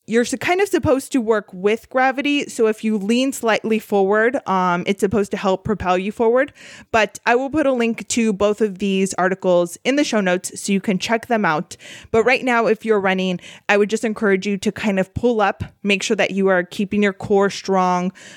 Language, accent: English, American